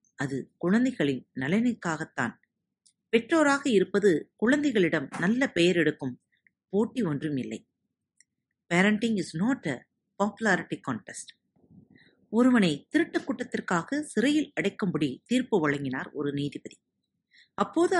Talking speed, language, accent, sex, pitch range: 95 wpm, Tamil, native, female, 165-245 Hz